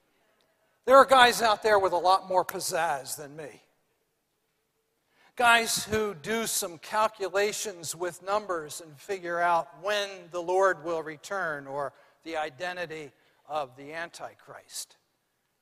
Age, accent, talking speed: 60-79, American, 125 wpm